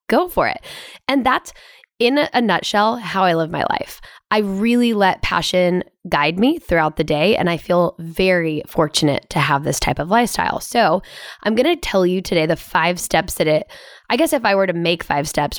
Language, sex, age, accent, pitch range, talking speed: English, female, 10-29, American, 160-215 Hz, 205 wpm